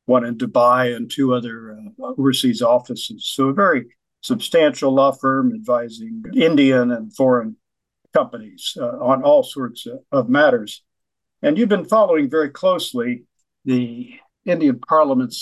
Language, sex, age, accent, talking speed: English, male, 50-69, American, 135 wpm